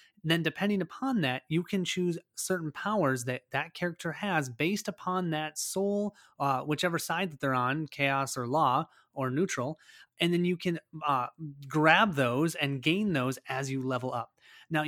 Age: 30-49